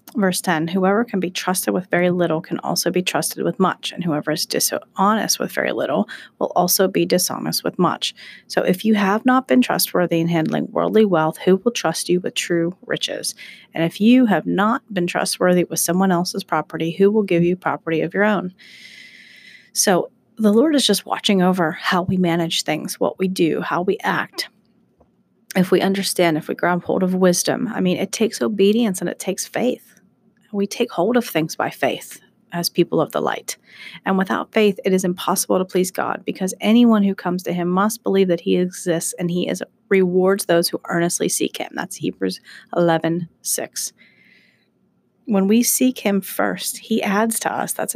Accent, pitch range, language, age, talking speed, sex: American, 170-210 Hz, English, 30-49, 195 wpm, female